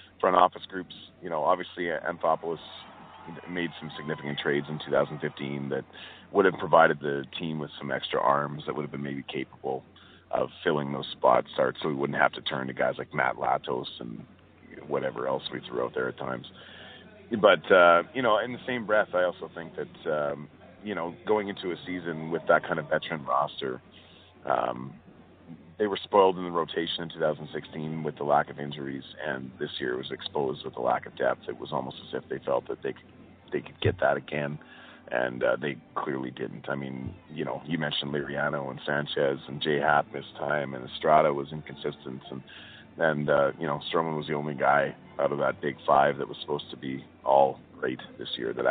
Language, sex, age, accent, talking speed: English, male, 40-59, American, 205 wpm